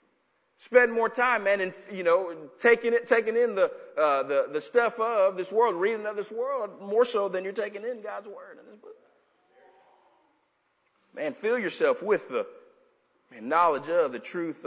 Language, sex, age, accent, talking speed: English, male, 40-59, American, 180 wpm